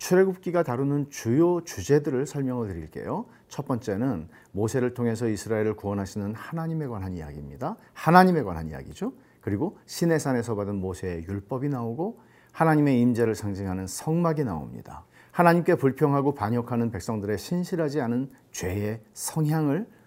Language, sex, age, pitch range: Korean, male, 40-59, 105-160 Hz